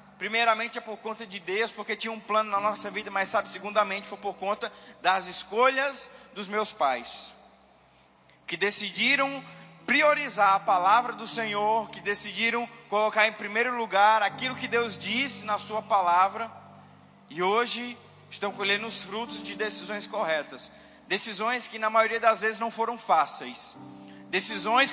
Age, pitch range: 20-39, 205-245 Hz